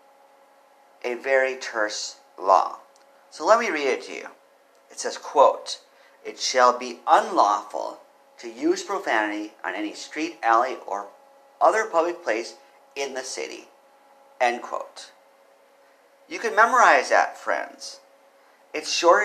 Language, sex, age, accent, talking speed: English, male, 50-69, American, 130 wpm